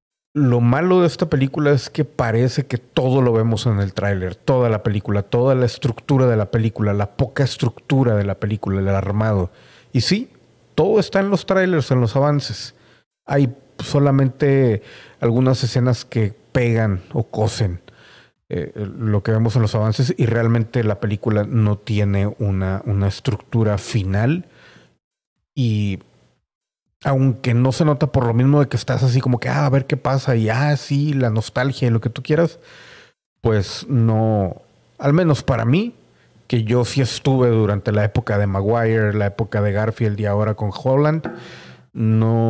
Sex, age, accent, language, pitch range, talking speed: male, 40-59, Mexican, Spanish, 105-135 Hz, 170 wpm